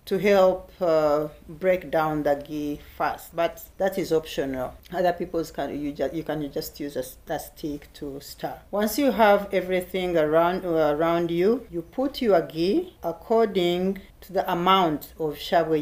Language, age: English, 40-59